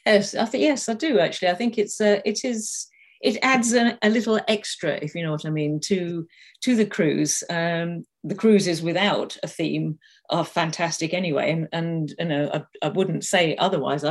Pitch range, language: 155-200 Hz, English